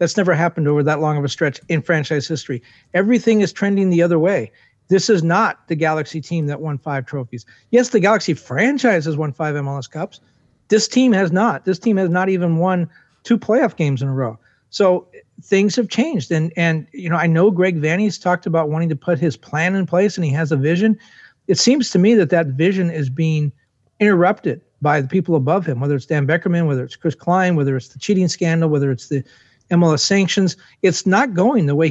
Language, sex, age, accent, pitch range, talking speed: English, male, 40-59, American, 150-190 Hz, 220 wpm